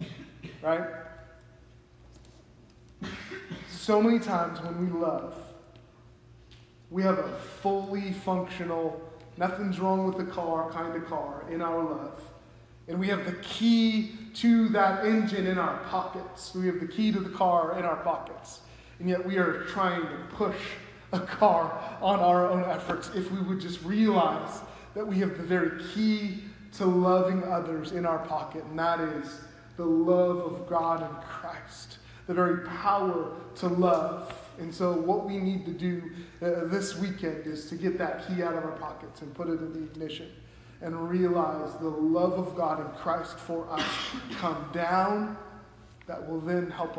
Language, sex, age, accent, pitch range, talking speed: English, male, 20-39, American, 160-185 Hz, 165 wpm